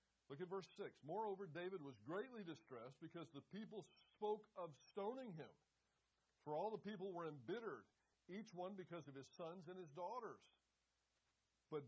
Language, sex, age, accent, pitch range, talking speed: English, male, 60-79, American, 135-200 Hz, 160 wpm